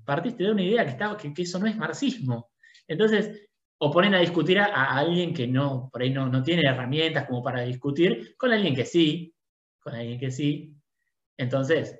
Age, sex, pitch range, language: 20-39, male, 125-160 Hz, Spanish